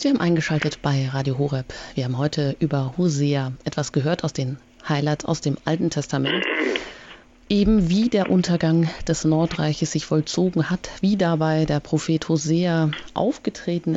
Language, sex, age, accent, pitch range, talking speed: German, female, 30-49, German, 155-185 Hz, 150 wpm